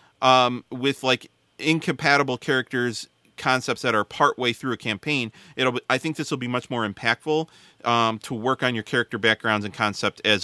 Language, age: English, 30-49